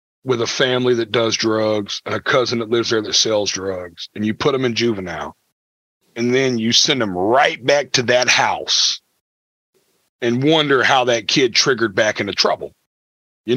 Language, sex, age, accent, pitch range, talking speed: English, male, 40-59, American, 110-135 Hz, 180 wpm